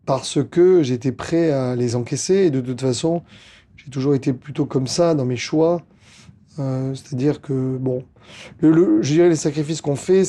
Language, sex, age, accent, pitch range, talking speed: French, male, 30-49, French, 125-155 Hz, 185 wpm